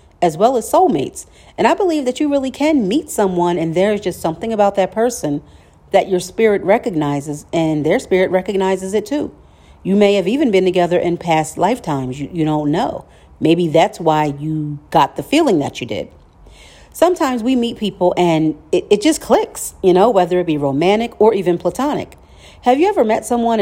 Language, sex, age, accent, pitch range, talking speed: English, female, 40-59, American, 170-235 Hz, 195 wpm